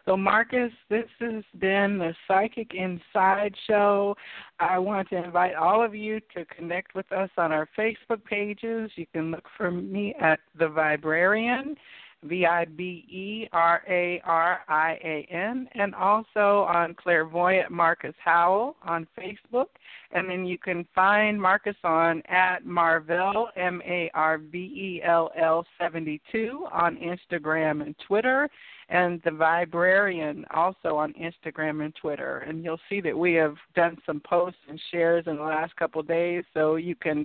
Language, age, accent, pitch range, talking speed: English, 60-79, American, 165-205 Hz, 135 wpm